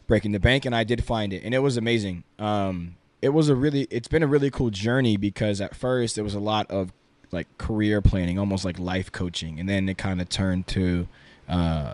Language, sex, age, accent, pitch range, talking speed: English, male, 20-39, American, 95-115 Hz, 230 wpm